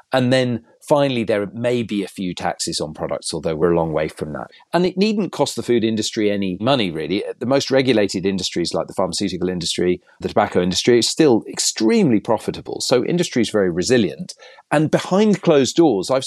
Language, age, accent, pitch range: English, 40-59, British, 100-135 Hz